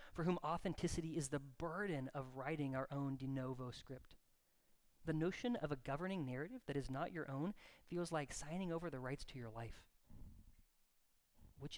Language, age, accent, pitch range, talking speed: English, 30-49, American, 135-175 Hz, 175 wpm